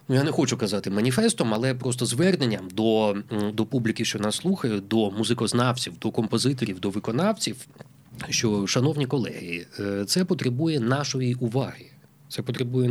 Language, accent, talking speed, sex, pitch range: Ukrainian, native, 135 wpm, male, 115-150 Hz